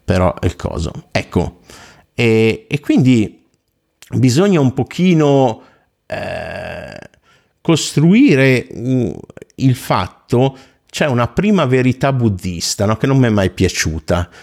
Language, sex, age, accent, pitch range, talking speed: Italian, male, 50-69, native, 100-130 Hz, 110 wpm